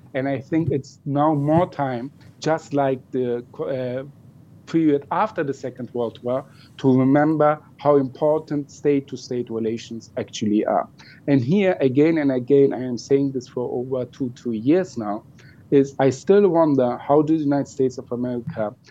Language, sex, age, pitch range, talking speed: English, male, 50-69, 130-150 Hz, 160 wpm